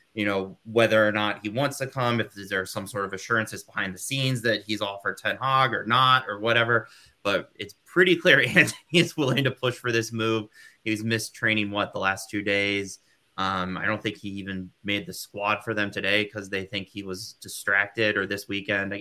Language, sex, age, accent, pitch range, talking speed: English, male, 20-39, American, 100-110 Hz, 215 wpm